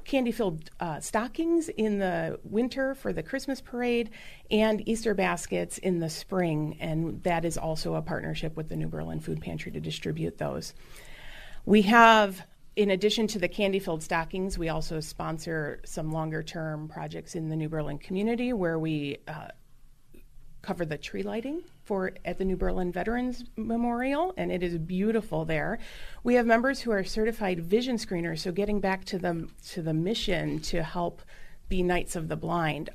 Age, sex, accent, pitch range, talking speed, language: 40-59, female, American, 165-210 Hz, 165 wpm, English